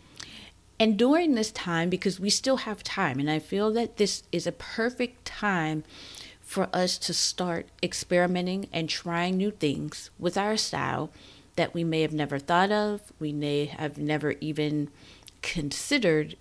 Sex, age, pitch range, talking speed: female, 40-59, 145-200 Hz, 155 wpm